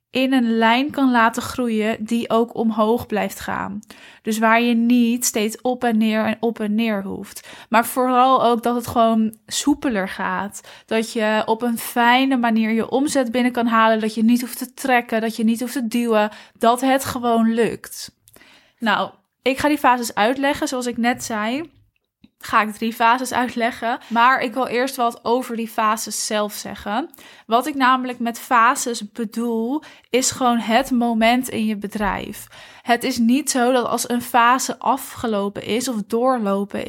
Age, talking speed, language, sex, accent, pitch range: 20-39, 175 wpm, Dutch, female, Dutch, 225-250 Hz